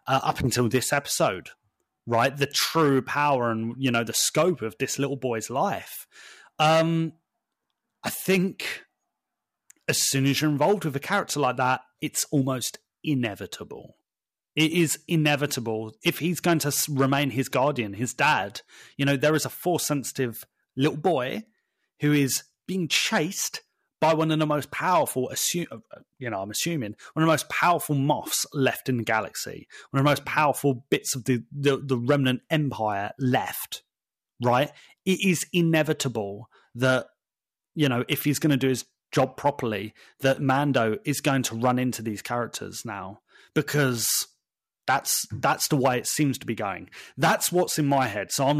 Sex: male